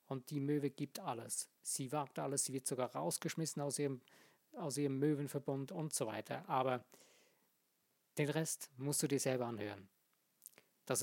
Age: 50-69